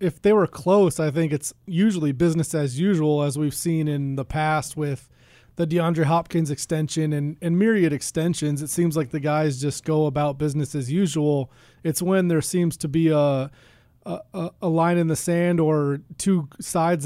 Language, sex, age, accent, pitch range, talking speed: English, male, 20-39, American, 150-175 Hz, 185 wpm